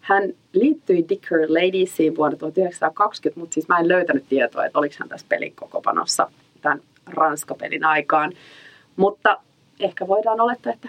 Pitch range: 155-220 Hz